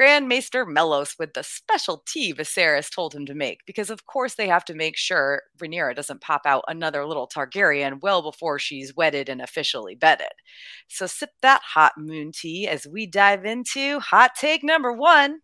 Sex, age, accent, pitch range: female, 30-49, American, 150-200 Hz